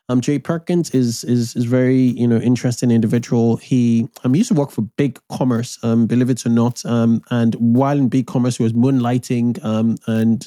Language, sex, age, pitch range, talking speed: English, male, 20-39, 120-130 Hz, 205 wpm